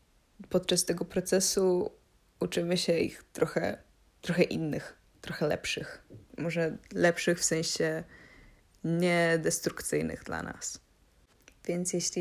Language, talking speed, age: Polish, 100 wpm, 20-39